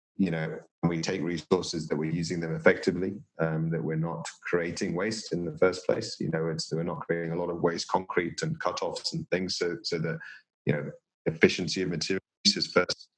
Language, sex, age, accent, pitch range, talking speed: English, male, 30-49, British, 85-95 Hz, 205 wpm